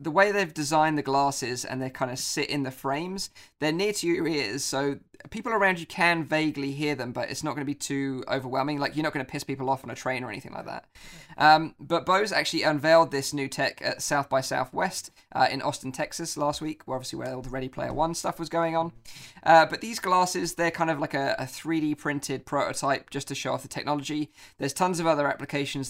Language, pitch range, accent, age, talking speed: English, 135-160 Hz, British, 20-39, 235 wpm